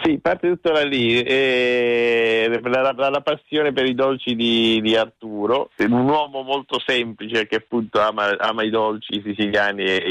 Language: Italian